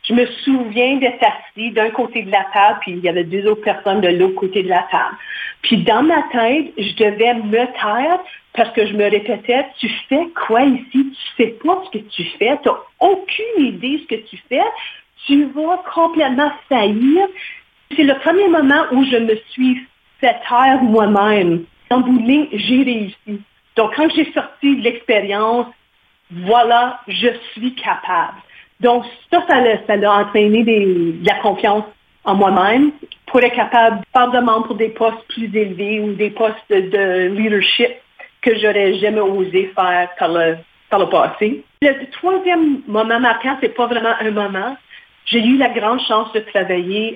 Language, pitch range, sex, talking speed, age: French, 195-255 Hz, female, 180 wpm, 50-69